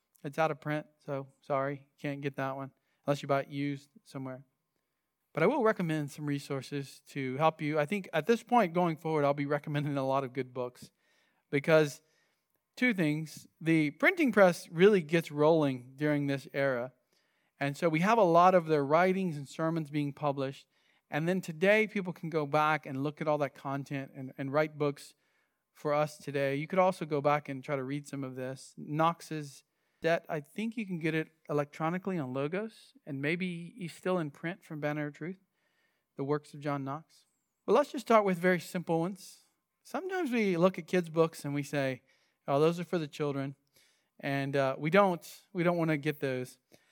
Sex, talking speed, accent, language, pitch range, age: male, 200 wpm, American, English, 140-175 Hz, 40-59